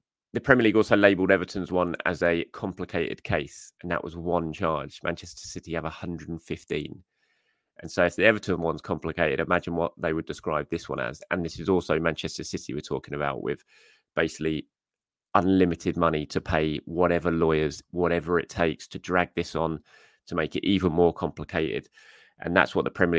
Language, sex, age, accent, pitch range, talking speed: English, male, 30-49, British, 85-115 Hz, 180 wpm